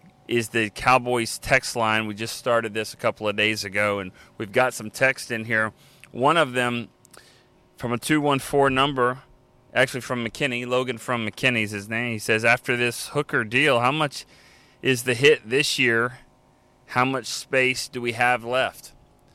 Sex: male